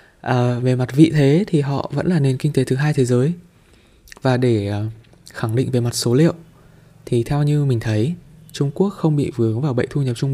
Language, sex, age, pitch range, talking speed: Vietnamese, male, 20-39, 115-145 Hz, 230 wpm